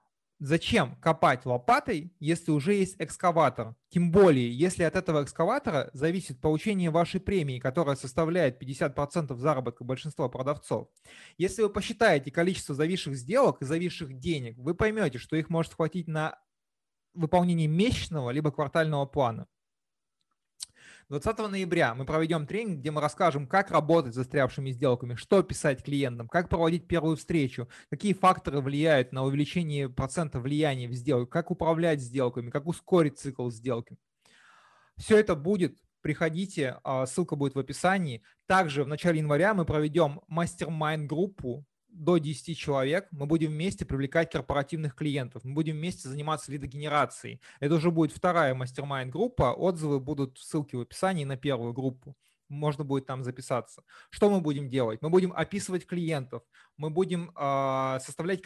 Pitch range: 140-170 Hz